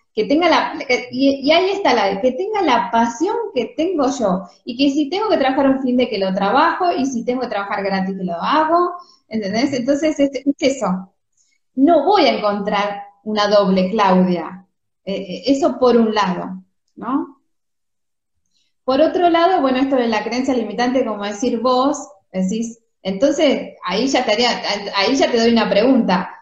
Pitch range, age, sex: 205-285 Hz, 20-39, female